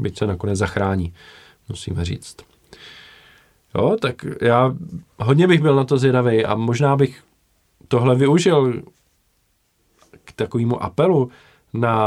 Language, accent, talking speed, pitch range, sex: Czech, native, 120 wpm, 110-135 Hz, male